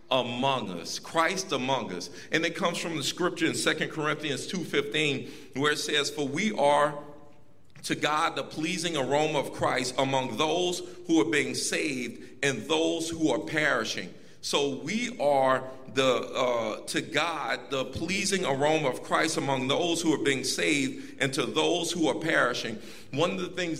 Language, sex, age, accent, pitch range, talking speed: English, male, 40-59, American, 135-160 Hz, 170 wpm